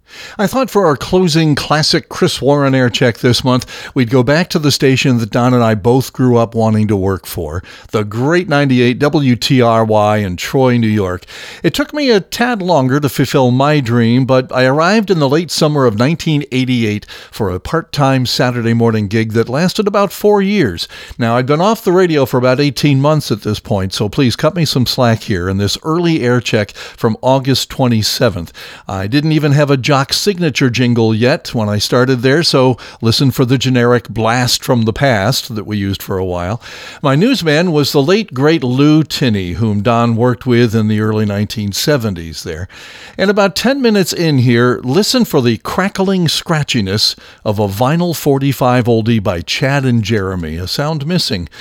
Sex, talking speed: male, 190 wpm